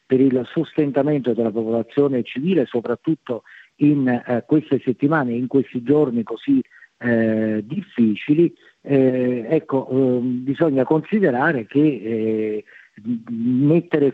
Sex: male